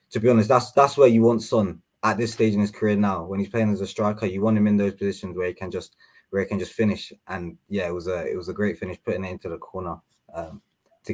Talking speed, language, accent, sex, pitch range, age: 290 wpm, English, British, male, 95-115 Hz, 20-39